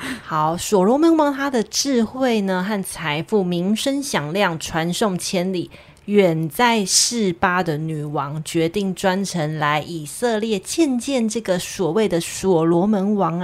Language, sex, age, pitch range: Chinese, female, 20-39, 170-225 Hz